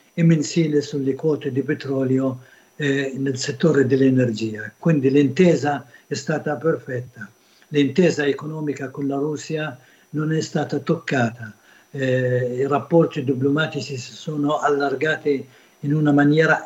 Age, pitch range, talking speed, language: 60-79, 140-170 Hz, 125 wpm, Italian